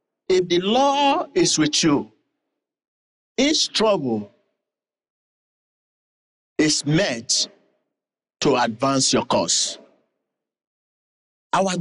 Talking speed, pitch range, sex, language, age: 75 wpm, 155-260 Hz, male, English, 50-69